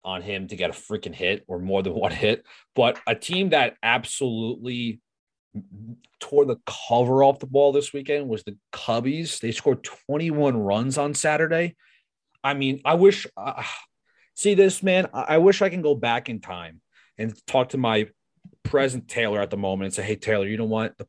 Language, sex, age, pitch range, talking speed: English, male, 30-49, 105-150 Hz, 190 wpm